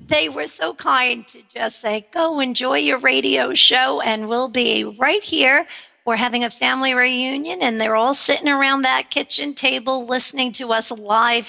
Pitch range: 220-270 Hz